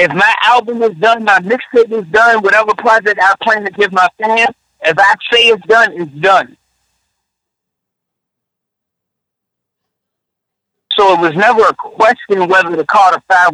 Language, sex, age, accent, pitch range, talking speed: English, male, 50-69, American, 165-220 Hz, 150 wpm